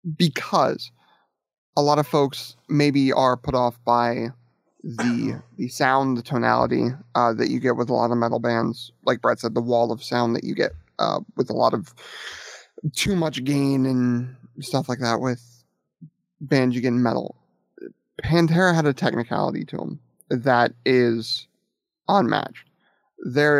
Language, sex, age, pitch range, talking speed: English, male, 30-49, 120-150 Hz, 160 wpm